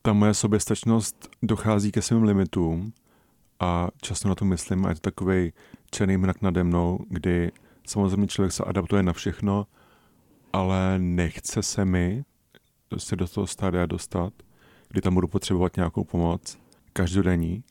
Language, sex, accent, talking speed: Czech, male, native, 150 wpm